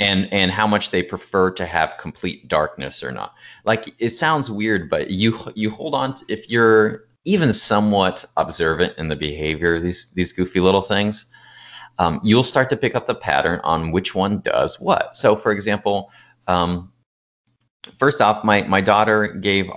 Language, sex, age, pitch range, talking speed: English, male, 30-49, 85-110 Hz, 180 wpm